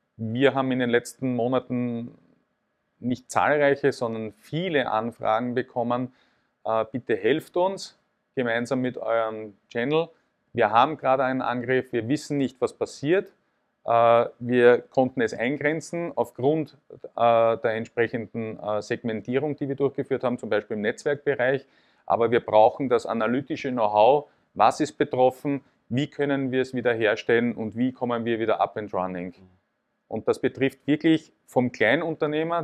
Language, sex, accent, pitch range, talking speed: German, male, Austrian, 115-135 Hz, 135 wpm